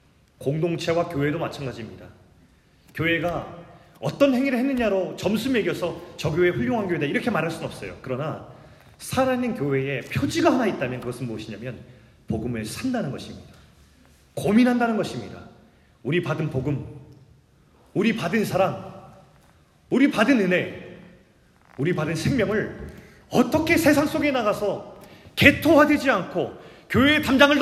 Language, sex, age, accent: Korean, male, 30-49, native